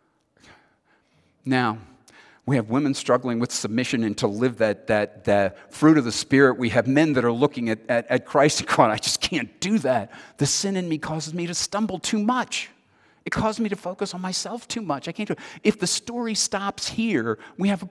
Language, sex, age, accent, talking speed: English, male, 50-69, American, 220 wpm